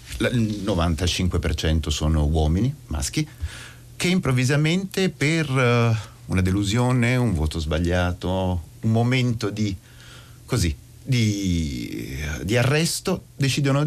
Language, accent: Italian, native